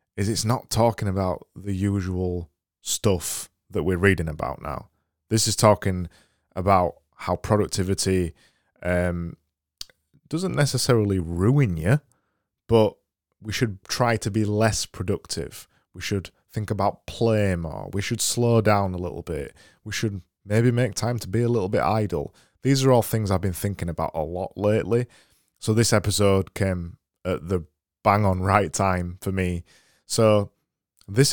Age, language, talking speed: 20-39, English, 155 wpm